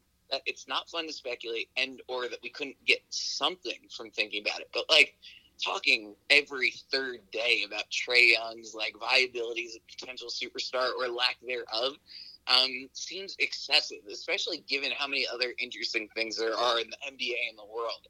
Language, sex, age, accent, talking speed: English, male, 20-39, American, 175 wpm